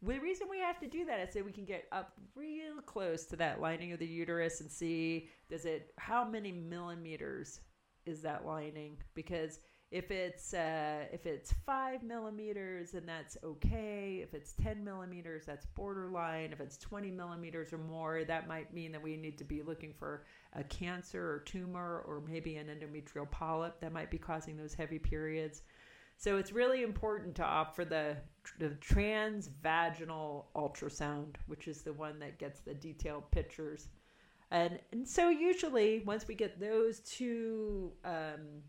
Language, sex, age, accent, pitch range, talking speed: English, female, 50-69, American, 155-195 Hz, 170 wpm